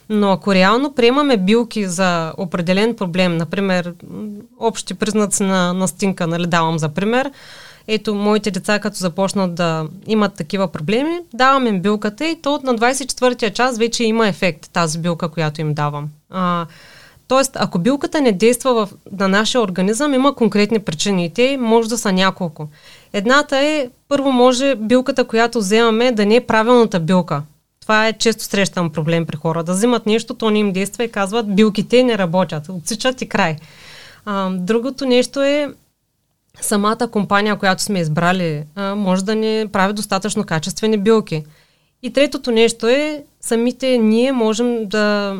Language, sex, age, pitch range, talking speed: Bulgarian, female, 30-49, 185-235 Hz, 160 wpm